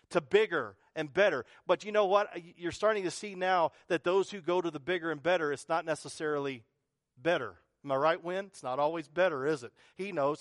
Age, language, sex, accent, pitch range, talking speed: 40-59, English, male, American, 150-205 Hz, 220 wpm